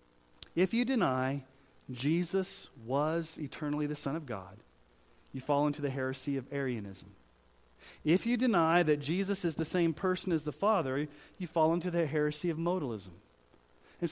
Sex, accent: male, American